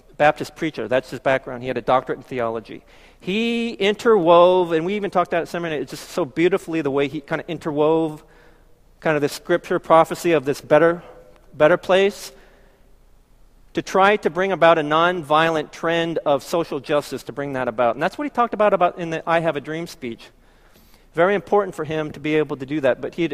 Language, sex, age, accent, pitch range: Korean, male, 40-59, American, 145-180 Hz